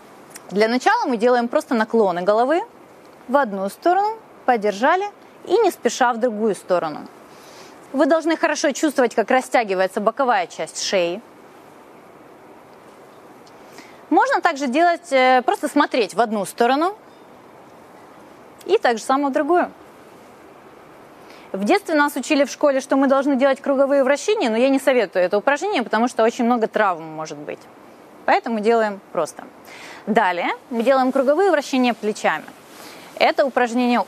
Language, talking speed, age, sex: Ukrainian, 130 wpm, 20-39, female